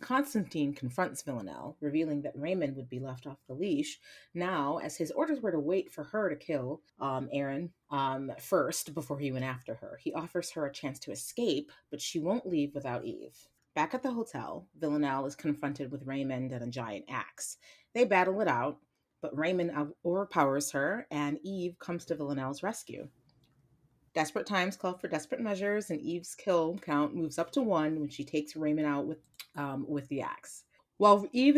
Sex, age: female, 30-49